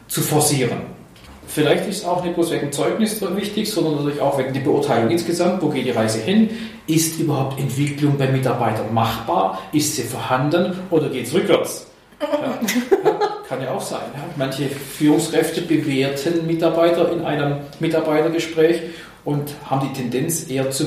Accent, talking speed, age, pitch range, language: German, 150 wpm, 40-59, 145-180 Hz, German